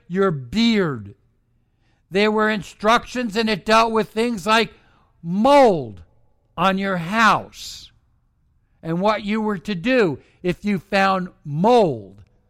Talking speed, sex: 120 wpm, male